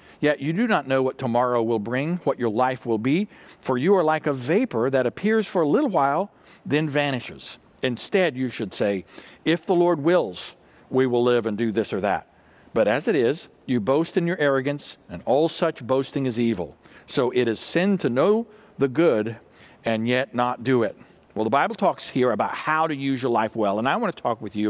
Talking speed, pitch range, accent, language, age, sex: 220 wpm, 115-155 Hz, American, English, 60-79, male